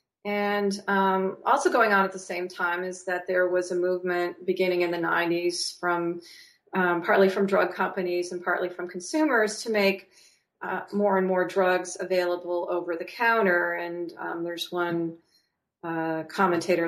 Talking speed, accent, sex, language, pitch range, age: 165 wpm, American, female, English, 170-195 Hz, 40-59